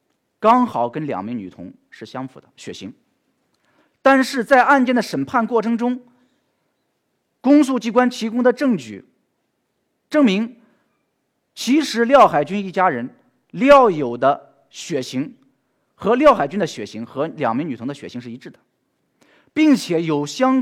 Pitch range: 180-255 Hz